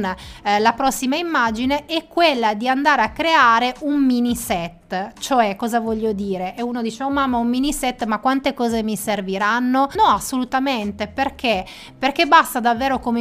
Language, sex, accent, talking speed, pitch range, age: Italian, female, native, 165 wpm, 220-260 Hz, 20-39